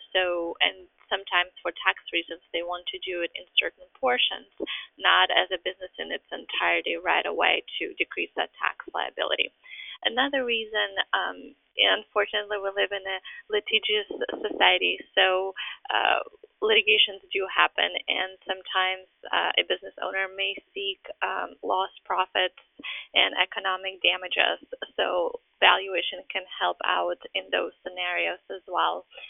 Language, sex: English, female